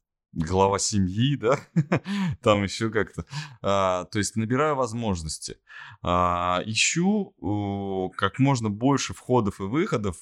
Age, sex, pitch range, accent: 20-39, male, 95-125 Hz, native